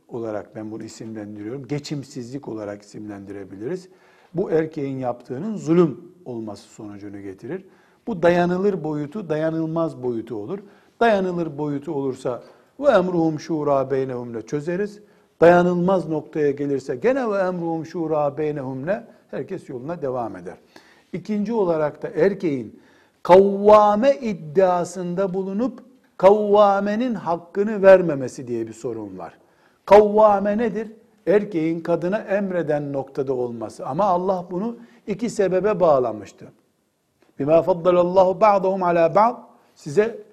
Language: Turkish